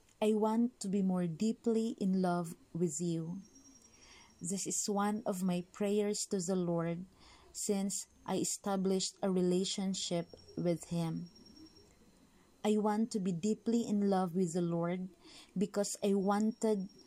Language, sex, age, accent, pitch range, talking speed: English, female, 20-39, Filipino, 180-220 Hz, 135 wpm